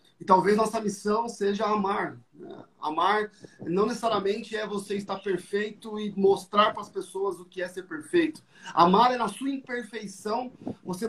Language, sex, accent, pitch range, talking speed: Portuguese, male, Brazilian, 180-215 Hz, 160 wpm